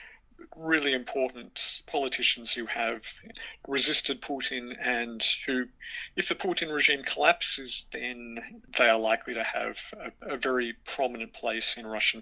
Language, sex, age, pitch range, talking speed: English, male, 50-69, 120-140 Hz, 135 wpm